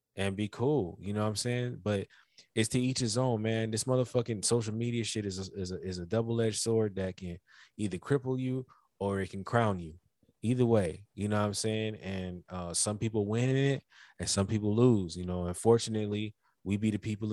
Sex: male